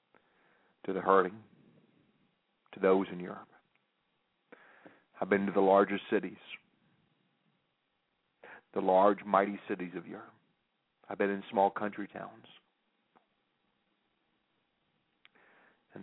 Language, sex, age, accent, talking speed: English, male, 50-69, American, 95 wpm